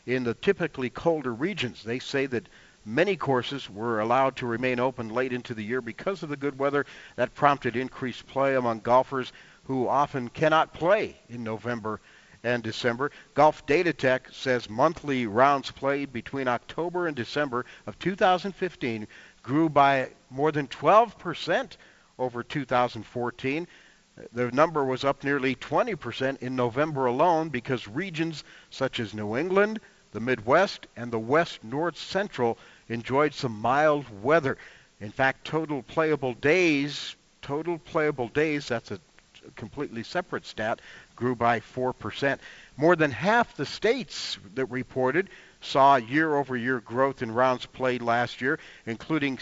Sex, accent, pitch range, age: male, American, 120-150 Hz, 50-69